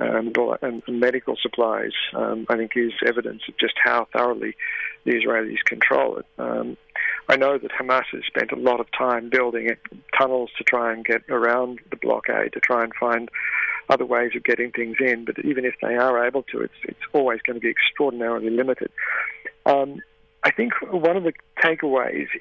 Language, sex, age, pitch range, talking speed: English, male, 50-69, 120-140 Hz, 180 wpm